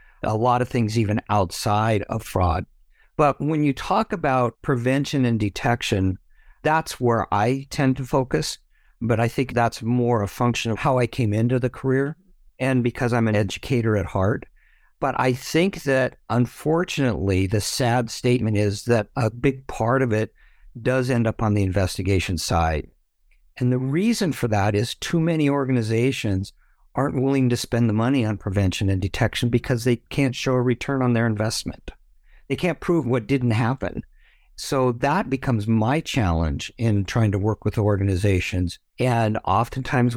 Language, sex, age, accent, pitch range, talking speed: English, male, 50-69, American, 105-130 Hz, 165 wpm